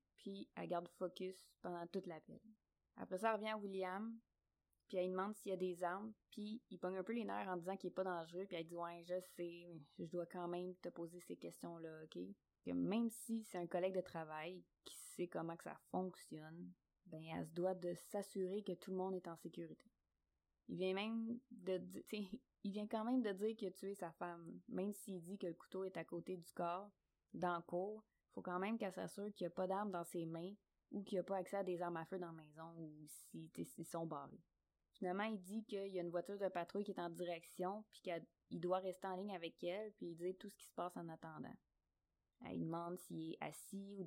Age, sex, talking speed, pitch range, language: 20-39, female, 245 wpm, 170-195 Hz, French